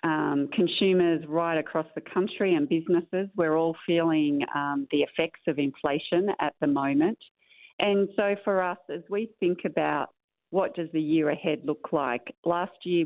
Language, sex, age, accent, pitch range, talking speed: English, female, 40-59, Australian, 150-175 Hz, 165 wpm